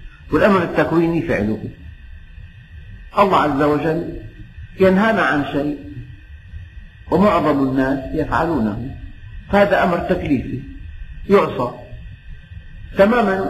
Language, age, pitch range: Arabic, 50-69, 100-155 Hz